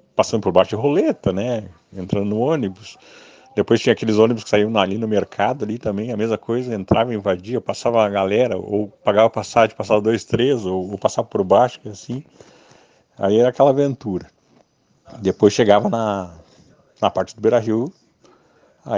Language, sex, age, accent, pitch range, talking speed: Portuguese, male, 50-69, Brazilian, 100-125 Hz, 170 wpm